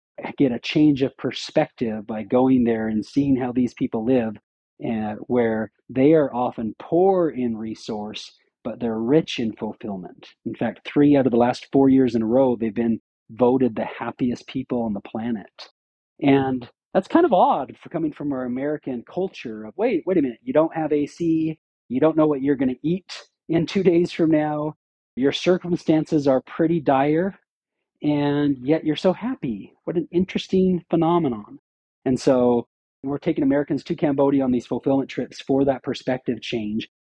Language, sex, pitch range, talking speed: English, male, 120-150 Hz, 180 wpm